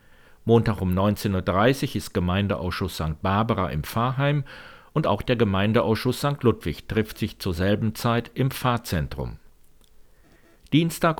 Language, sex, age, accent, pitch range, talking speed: German, male, 50-69, German, 95-125 Hz, 130 wpm